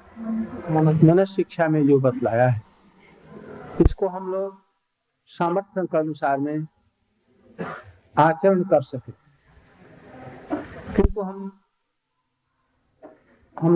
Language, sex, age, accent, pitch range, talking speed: Hindi, male, 50-69, native, 150-195 Hz, 80 wpm